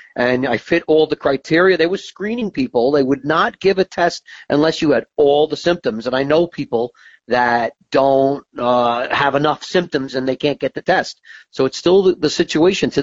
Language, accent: English, American